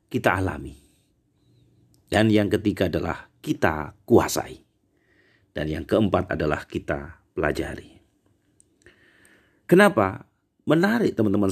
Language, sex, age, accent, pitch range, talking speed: Indonesian, male, 40-59, native, 95-150 Hz, 90 wpm